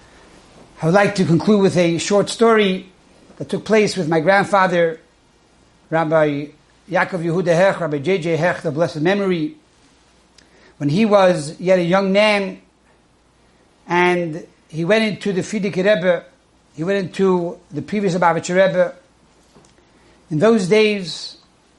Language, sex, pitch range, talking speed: English, male, 170-210 Hz, 135 wpm